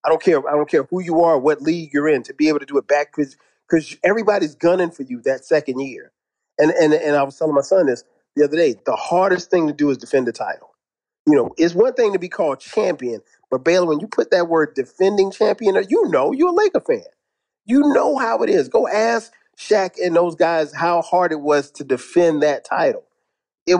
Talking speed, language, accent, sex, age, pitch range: 240 wpm, English, American, male, 40-59, 140-190 Hz